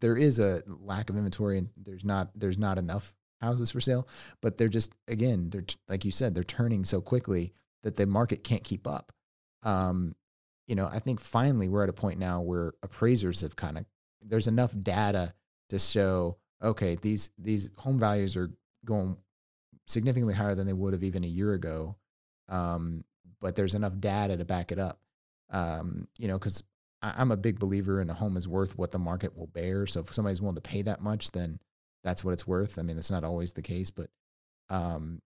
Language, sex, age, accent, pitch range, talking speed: English, male, 30-49, American, 90-105 Hz, 205 wpm